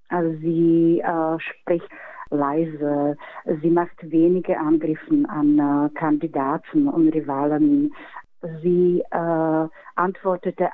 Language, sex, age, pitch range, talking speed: German, female, 40-59, 160-180 Hz, 95 wpm